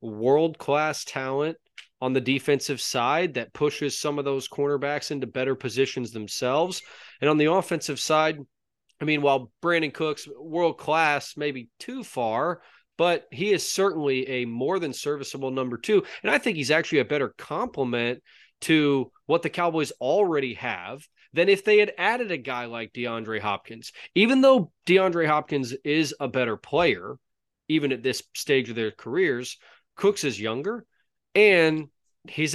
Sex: male